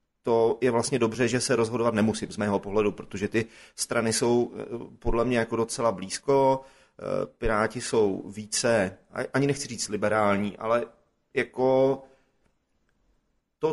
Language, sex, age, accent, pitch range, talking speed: Czech, male, 30-49, native, 105-115 Hz, 125 wpm